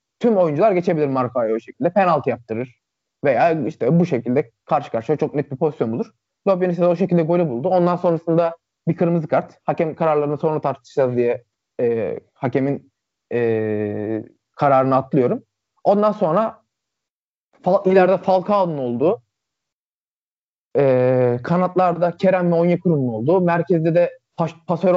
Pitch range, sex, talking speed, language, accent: 130-180 Hz, male, 135 wpm, Turkish, native